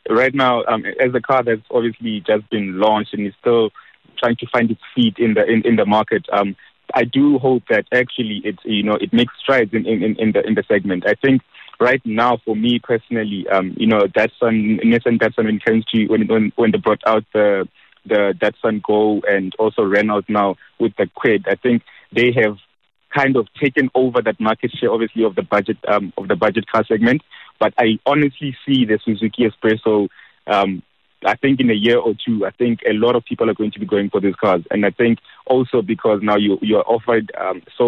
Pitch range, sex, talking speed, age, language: 105-120 Hz, male, 215 wpm, 20-39, English